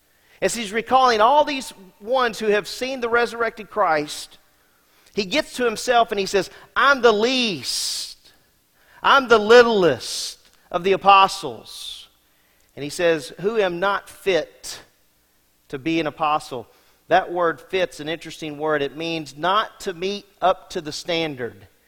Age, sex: 40-59, male